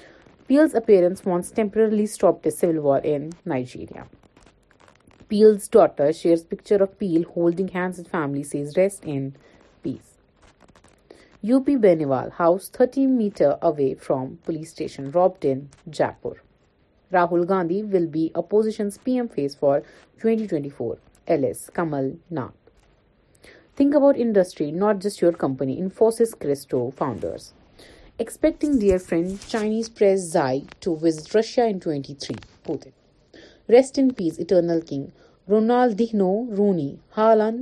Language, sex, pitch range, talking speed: Urdu, female, 155-215 Hz, 125 wpm